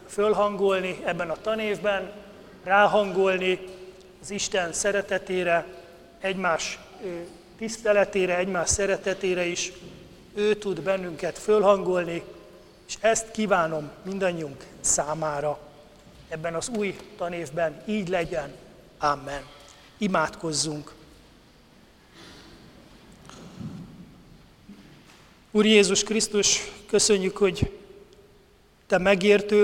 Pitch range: 180-205 Hz